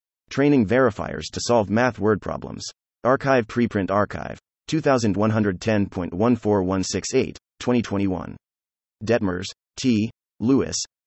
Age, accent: 30-49, American